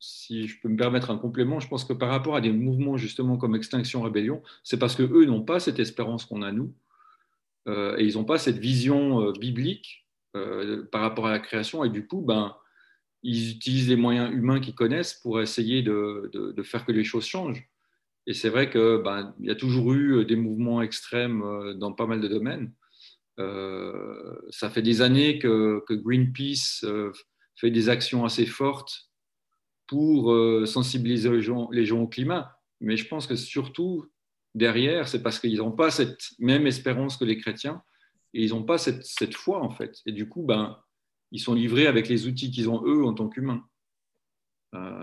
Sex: male